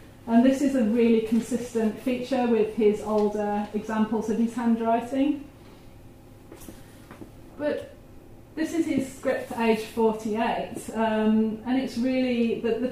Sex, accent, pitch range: female, British, 210-230 Hz